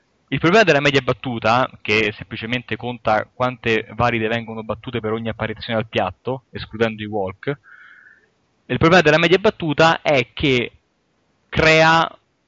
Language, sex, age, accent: Italian, male, 20-39, native